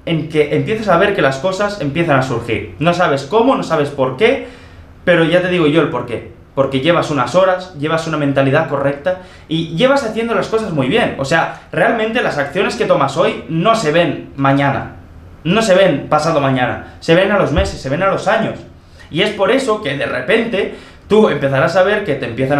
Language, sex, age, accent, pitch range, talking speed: Spanish, male, 20-39, Spanish, 135-185 Hz, 220 wpm